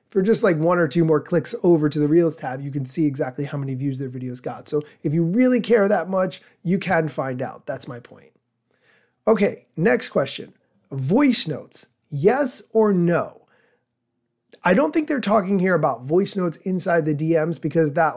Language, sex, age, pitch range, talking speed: English, male, 30-49, 150-205 Hz, 195 wpm